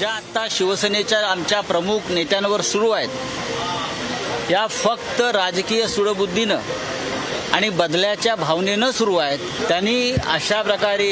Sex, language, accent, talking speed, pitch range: male, Marathi, native, 110 wpm, 165-210 Hz